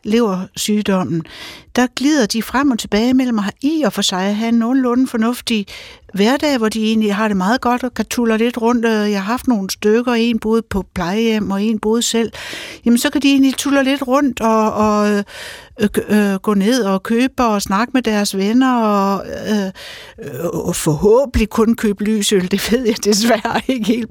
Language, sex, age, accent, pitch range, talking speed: Danish, female, 60-79, native, 220-275 Hz, 200 wpm